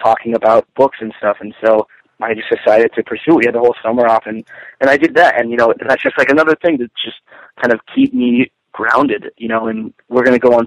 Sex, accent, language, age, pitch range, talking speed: male, American, English, 30-49, 115-125 Hz, 260 wpm